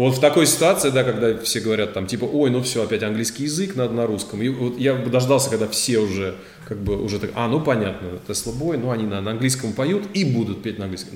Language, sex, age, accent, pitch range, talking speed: Russian, male, 20-39, native, 105-125 Hz, 255 wpm